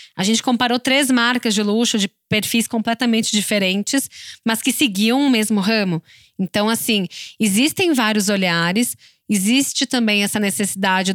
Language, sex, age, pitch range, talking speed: Portuguese, female, 10-29, 195-245 Hz, 140 wpm